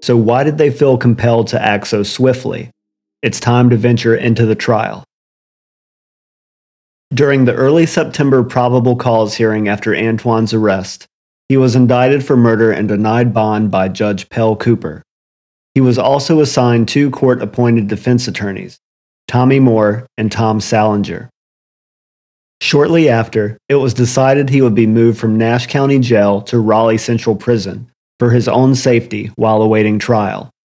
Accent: American